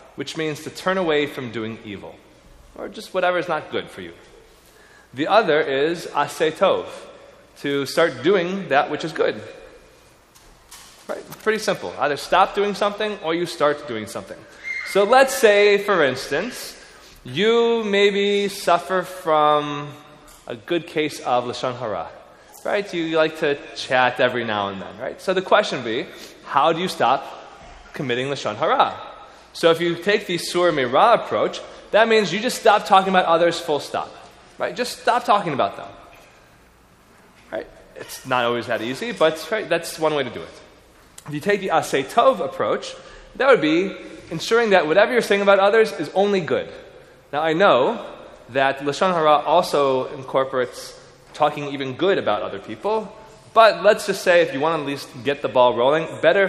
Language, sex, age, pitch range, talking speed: English, male, 20-39, 145-205 Hz, 175 wpm